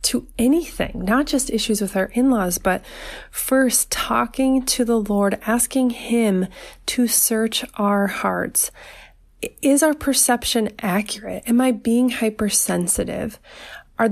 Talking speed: 125 wpm